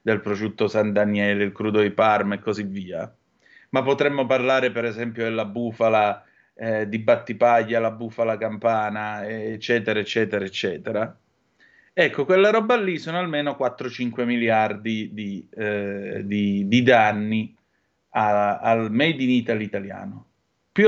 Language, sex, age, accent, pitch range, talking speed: Italian, male, 30-49, native, 110-140 Hz, 125 wpm